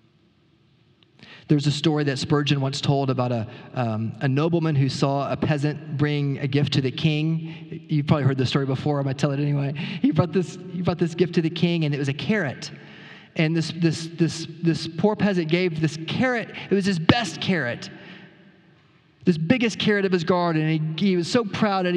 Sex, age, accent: male, 40-59, American